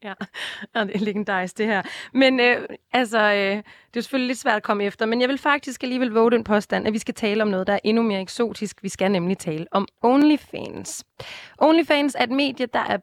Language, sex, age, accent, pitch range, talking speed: Danish, female, 20-39, native, 185-245 Hz, 225 wpm